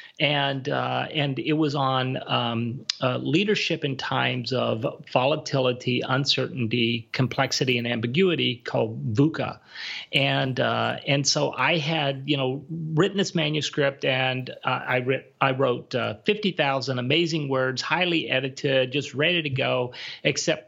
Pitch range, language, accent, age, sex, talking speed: 130-160 Hz, English, American, 40-59, male, 135 wpm